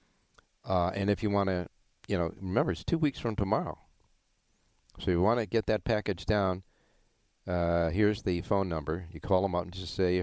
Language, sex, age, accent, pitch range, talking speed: English, male, 50-69, American, 85-105 Hz, 210 wpm